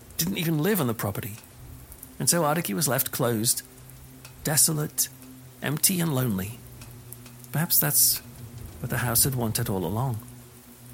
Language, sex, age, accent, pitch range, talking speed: English, male, 40-59, British, 115-135 Hz, 135 wpm